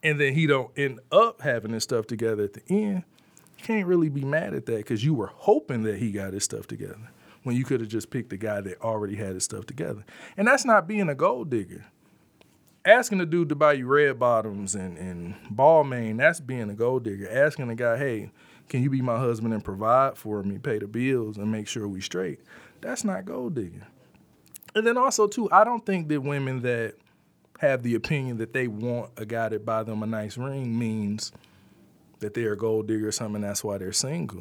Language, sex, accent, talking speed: English, male, American, 225 wpm